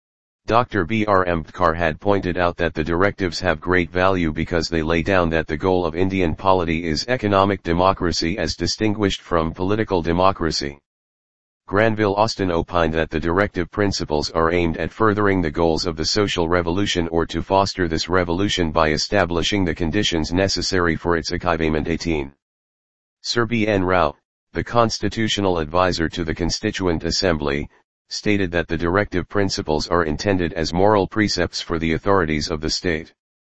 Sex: male